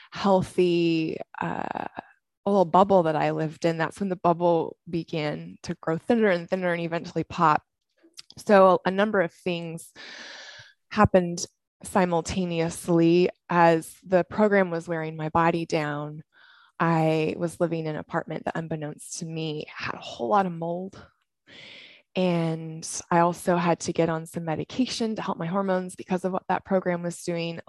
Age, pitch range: 20-39, 160-185 Hz